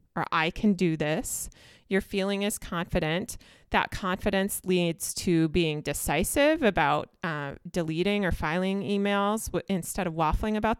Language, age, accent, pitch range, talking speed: English, 30-49, American, 165-215 Hz, 135 wpm